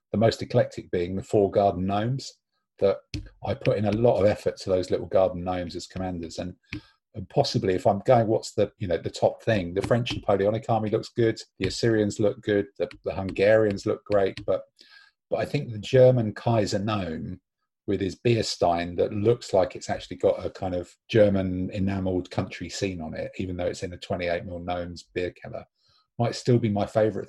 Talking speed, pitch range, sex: 205 wpm, 95-115 Hz, male